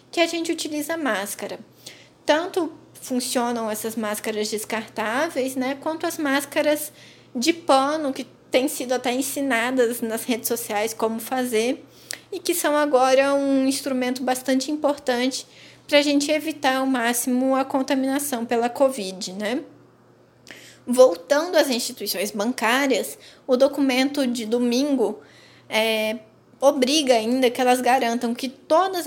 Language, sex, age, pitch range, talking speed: Portuguese, female, 20-39, 235-285 Hz, 125 wpm